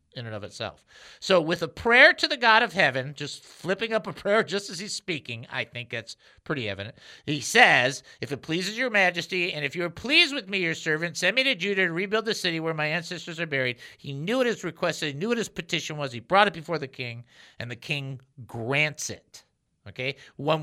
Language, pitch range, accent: English, 135-195 Hz, American